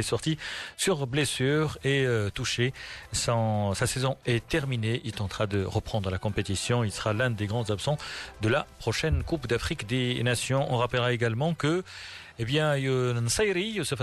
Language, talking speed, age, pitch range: Arabic, 155 wpm, 40-59, 110-145 Hz